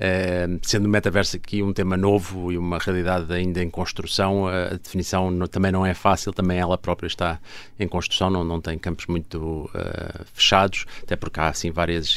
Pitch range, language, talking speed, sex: 85-95 Hz, Portuguese, 190 wpm, male